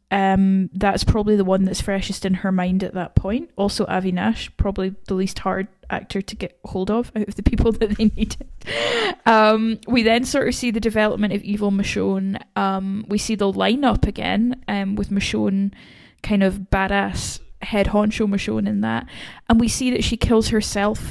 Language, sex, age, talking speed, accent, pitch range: English, female, 10-29, 190 wpm, British, 190-220 Hz